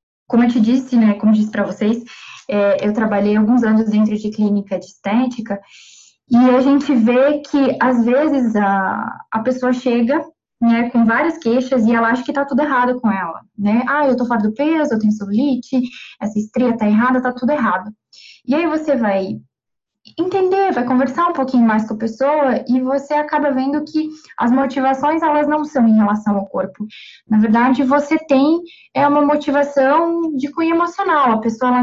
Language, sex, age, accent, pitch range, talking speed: Portuguese, female, 10-29, Brazilian, 220-280 Hz, 190 wpm